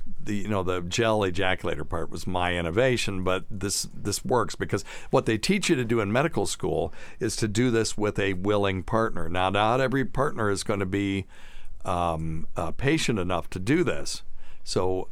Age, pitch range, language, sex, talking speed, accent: 60-79, 90-115 Hz, English, male, 190 wpm, American